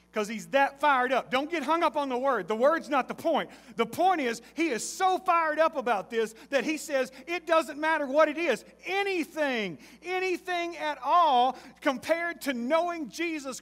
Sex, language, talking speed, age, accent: male, English, 195 wpm, 40-59, American